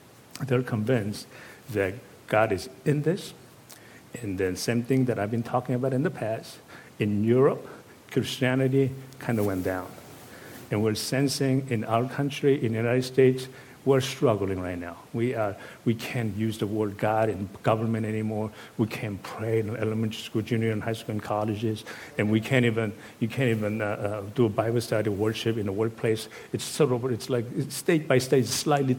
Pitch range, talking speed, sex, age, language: 110-130 Hz, 185 wpm, male, 60-79, English